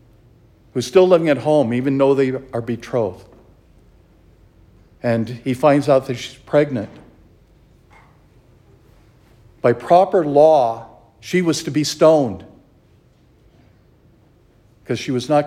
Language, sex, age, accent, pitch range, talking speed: English, male, 60-79, American, 115-165 Hz, 115 wpm